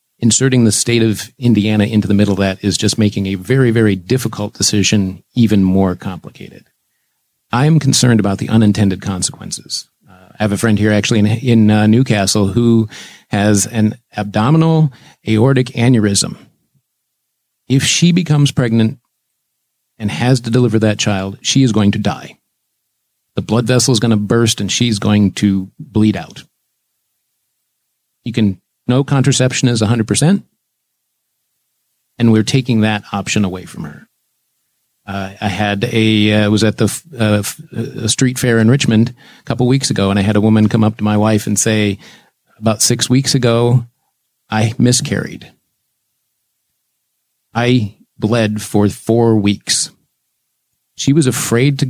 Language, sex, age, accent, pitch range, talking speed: English, male, 40-59, American, 105-125 Hz, 155 wpm